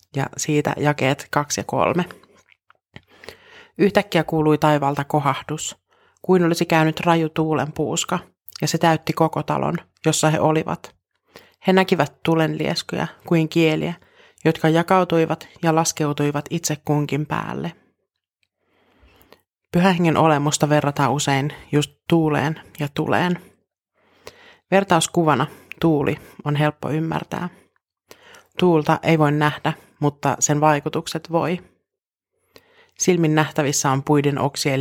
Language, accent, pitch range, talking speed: Finnish, native, 150-175 Hz, 105 wpm